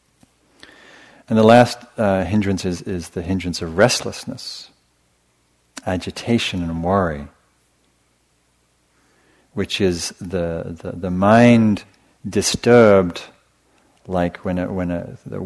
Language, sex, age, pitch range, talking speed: English, male, 50-69, 85-100 Hz, 105 wpm